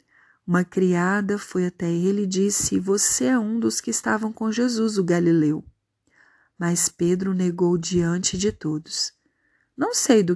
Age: 40-59